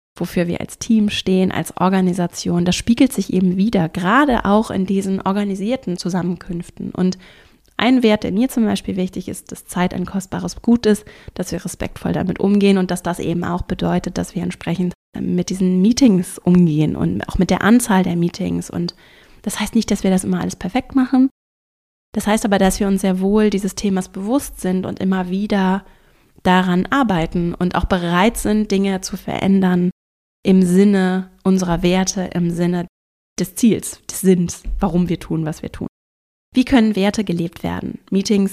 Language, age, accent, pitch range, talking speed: German, 20-39, German, 180-215 Hz, 180 wpm